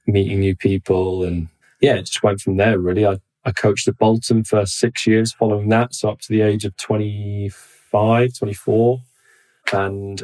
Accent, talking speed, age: British, 175 wpm, 20-39